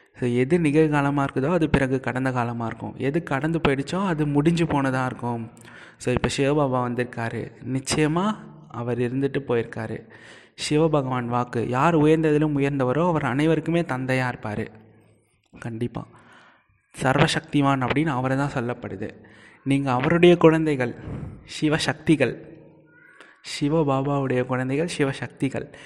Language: Tamil